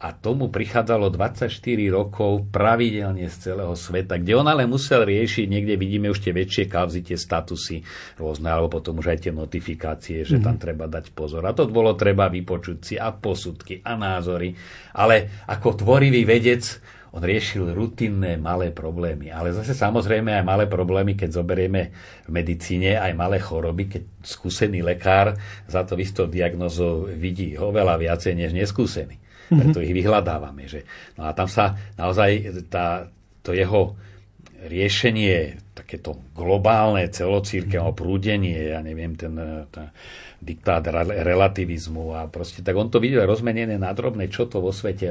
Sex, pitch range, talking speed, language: male, 85-105 Hz, 155 wpm, Slovak